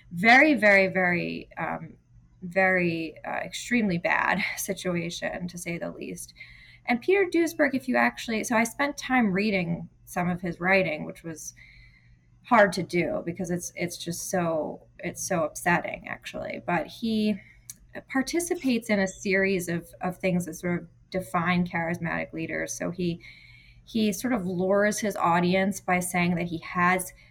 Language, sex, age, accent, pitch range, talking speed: English, female, 20-39, American, 175-205 Hz, 155 wpm